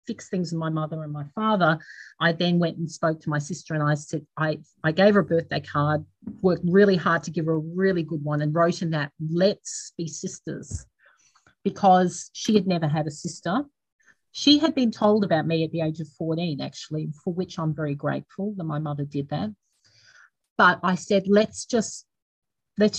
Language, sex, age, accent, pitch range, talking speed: English, female, 40-59, Australian, 160-210 Hz, 205 wpm